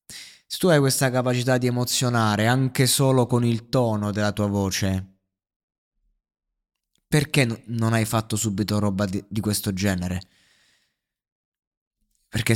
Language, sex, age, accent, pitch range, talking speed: Italian, male, 20-39, native, 100-130 Hz, 130 wpm